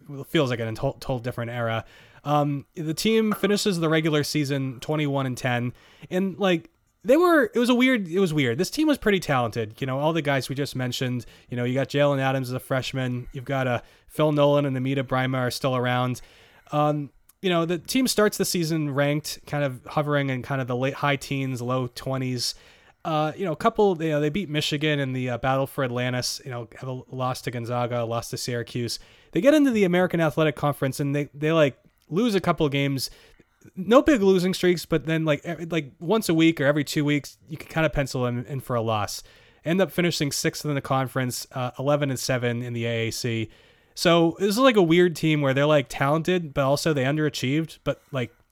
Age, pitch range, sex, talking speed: 20-39, 125-160 Hz, male, 225 wpm